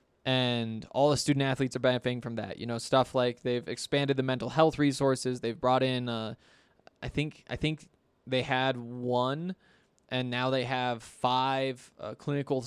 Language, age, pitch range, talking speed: English, 20-39, 120-140 Hz, 175 wpm